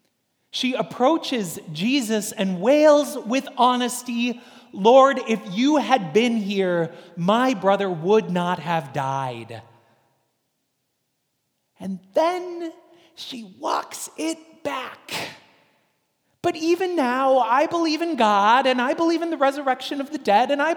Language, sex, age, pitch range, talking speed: English, male, 30-49, 175-255 Hz, 125 wpm